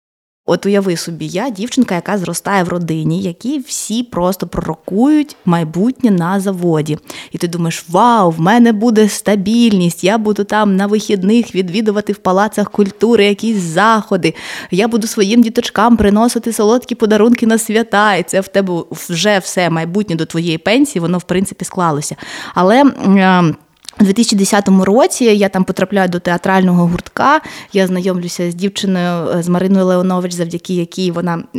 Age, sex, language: 20-39, female, Ukrainian